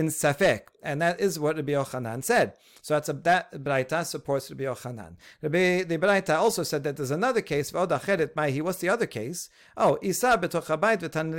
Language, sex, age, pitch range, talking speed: English, male, 50-69, 145-185 Hz, 170 wpm